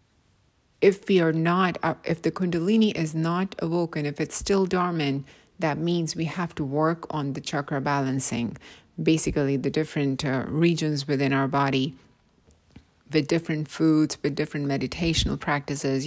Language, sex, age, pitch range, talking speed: English, female, 30-49, 140-175 Hz, 145 wpm